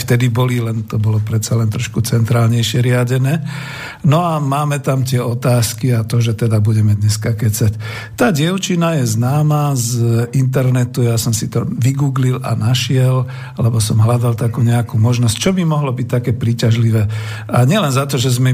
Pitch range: 115-140 Hz